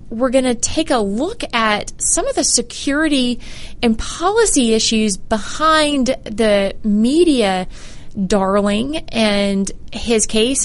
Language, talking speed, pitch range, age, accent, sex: English, 120 wpm, 190-240 Hz, 20-39, American, female